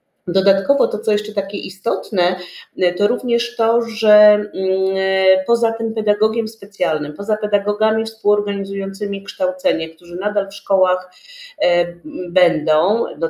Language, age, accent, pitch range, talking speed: Polish, 40-59, native, 195-230 Hz, 110 wpm